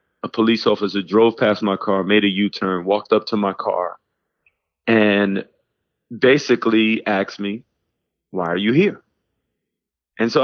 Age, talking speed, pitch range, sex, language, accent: 30-49, 150 wpm, 95-115 Hz, male, English, American